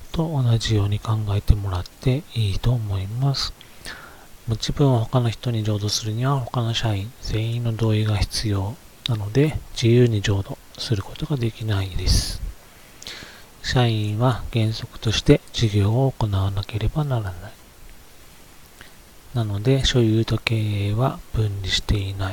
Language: Japanese